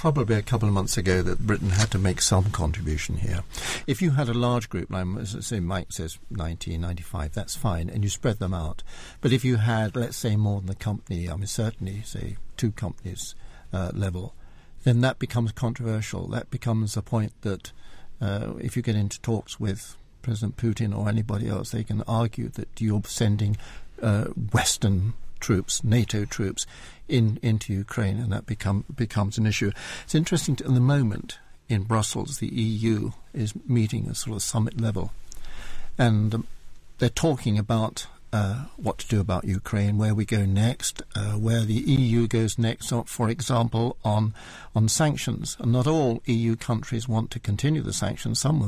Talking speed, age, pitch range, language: 180 wpm, 60-79, 100-120 Hz, English